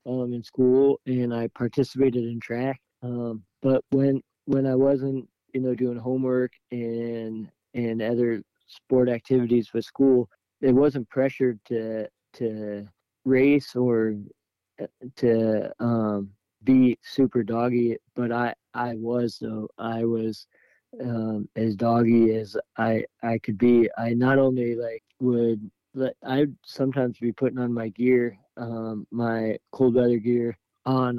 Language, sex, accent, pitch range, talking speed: English, male, American, 115-125 Hz, 135 wpm